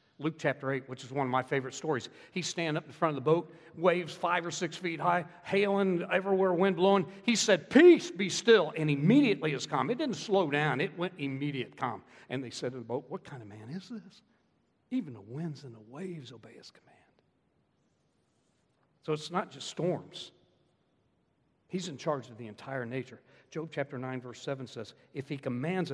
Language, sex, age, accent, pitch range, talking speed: English, male, 60-79, American, 130-190 Hz, 200 wpm